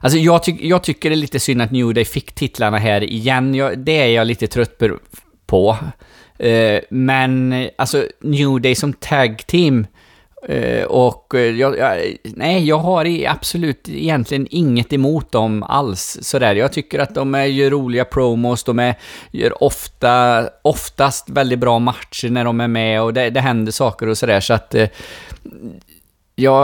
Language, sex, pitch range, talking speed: Swedish, male, 110-135 Hz, 170 wpm